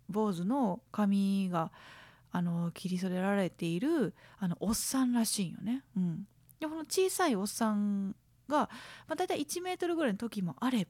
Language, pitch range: Japanese, 190-295 Hz